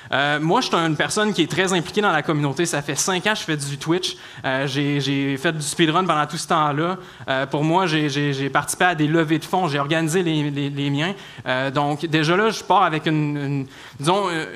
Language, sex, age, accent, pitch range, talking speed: French, male, 20-39, Canadian, 145-180 Hz, 245 wpm